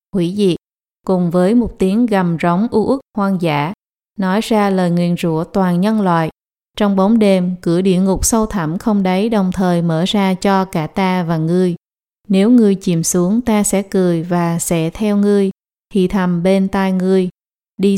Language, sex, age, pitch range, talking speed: English, female, 20-39, 175-210 Hz, 185 wpm